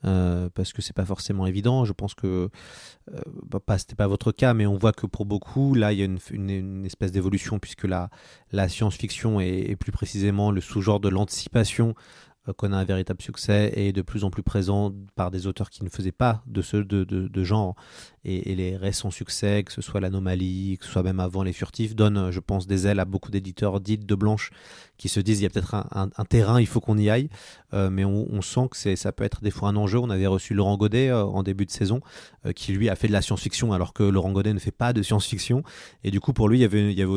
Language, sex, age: French, male, 30-49